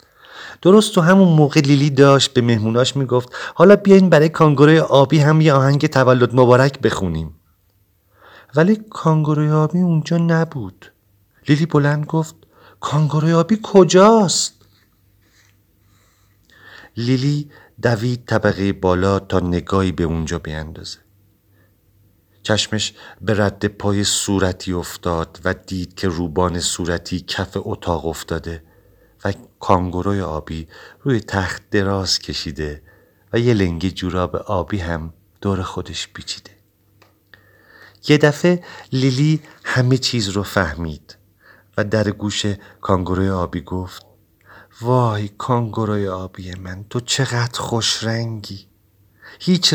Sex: male